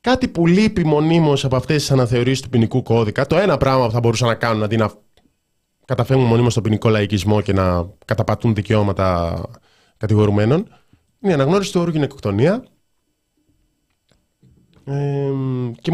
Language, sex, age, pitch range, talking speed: Greek, male, 20-39, 105-145 Hz, 145 wpm